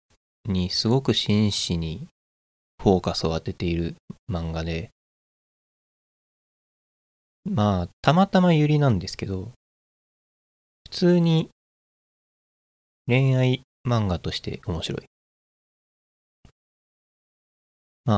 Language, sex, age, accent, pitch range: Japanese, male, 20-39, native, 85-110 Hz